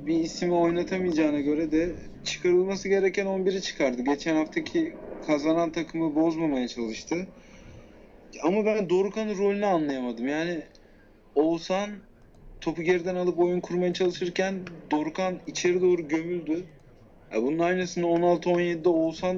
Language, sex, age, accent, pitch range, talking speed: Turkish, male, 30-49, native, 135-175 Hz, 120 wpm